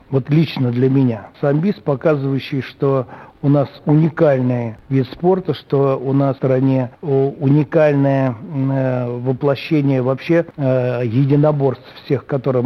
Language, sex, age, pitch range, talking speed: Russian, male, 60-79, 125-145 Hz, 110 wpm